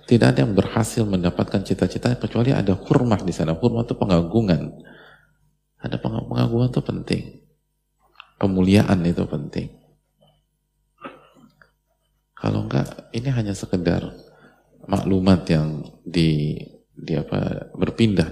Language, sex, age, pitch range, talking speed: Indonesian, male, 30-49, 85-105 Hz, 110 wpm